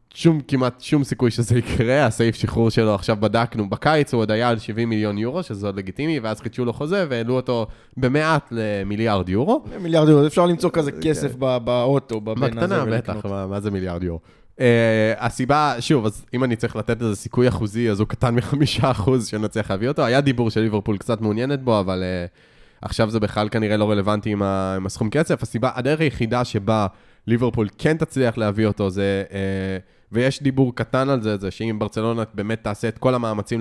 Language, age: Hebrew, 20-39